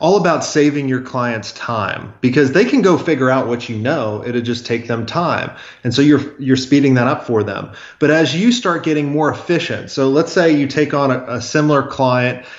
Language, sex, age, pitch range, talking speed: English, male, 30-49, 120-155 Hz, 225 wpm